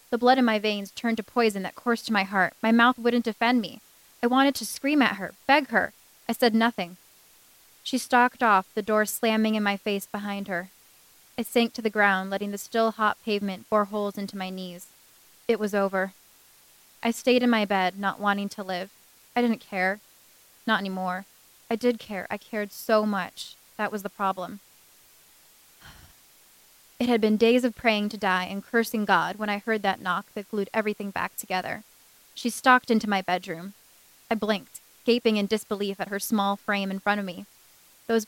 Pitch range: 195-230 Hz